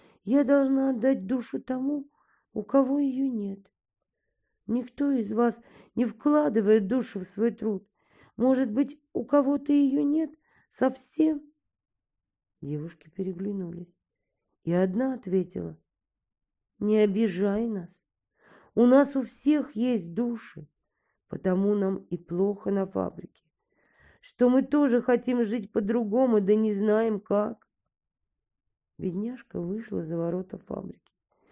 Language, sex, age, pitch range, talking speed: Russian, female, 40-59, 190-255 Hz, 115 wpm